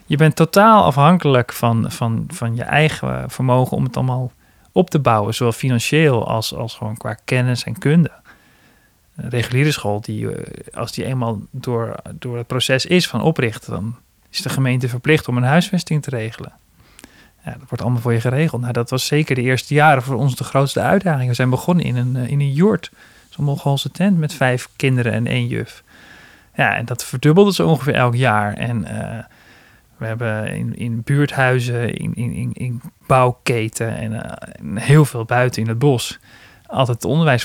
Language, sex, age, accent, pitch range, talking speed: Dutch, male, 40-59, Dutch, 120-150 Hz, 185 wpm